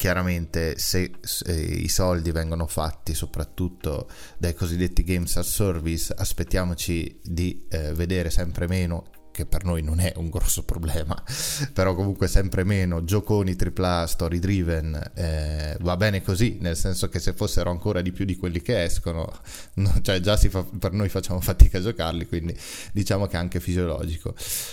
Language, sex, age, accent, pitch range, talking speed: Italian, male, 20-39, native, 80-100 Hz, 165 wpm